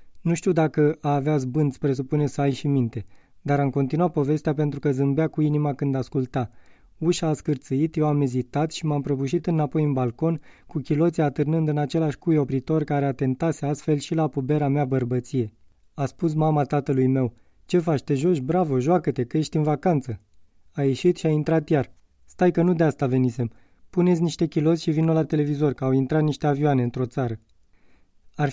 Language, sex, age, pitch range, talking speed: Romanian, male, 20-39, 135-160 Hz, 190 wpm